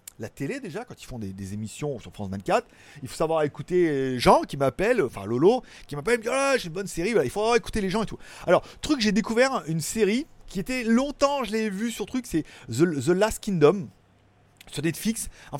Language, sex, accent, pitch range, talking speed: French, male, French, 145-215 Hz, 250 wpm